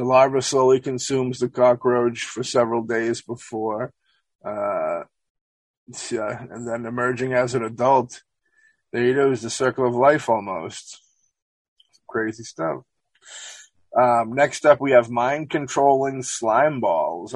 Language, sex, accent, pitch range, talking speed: English, male, American, 120-140 Hz, 130 wpm